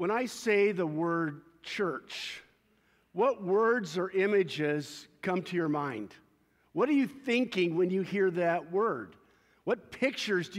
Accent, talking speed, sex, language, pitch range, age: American, 145 wpm, male, English, 170-215 Hz, 50-69